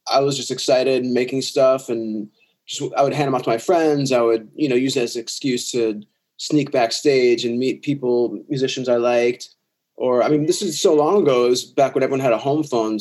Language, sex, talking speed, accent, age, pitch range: English, male, 240 wpm, American, 20-39, 120-155 Hz